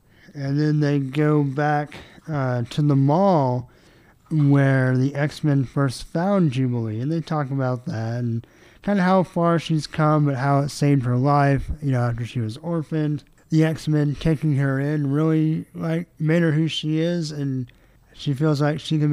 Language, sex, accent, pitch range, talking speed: English, male, American, 130-155 Hz, 185 wpm